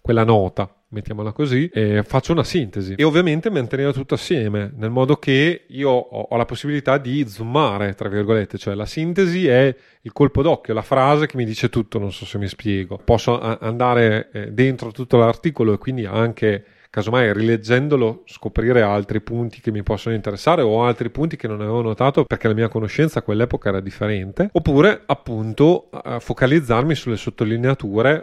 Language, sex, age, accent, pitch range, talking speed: Italian, male, 30-49, native, 110-130 Hz, 170 wpm